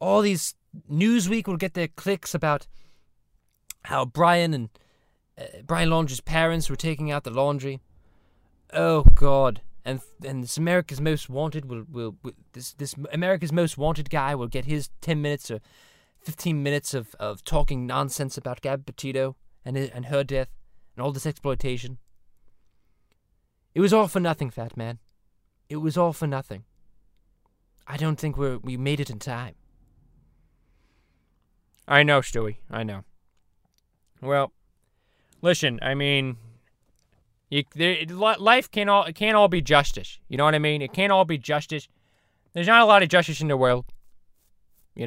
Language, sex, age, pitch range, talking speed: English, male, 20-39, 110-155 Hz, 155 wpm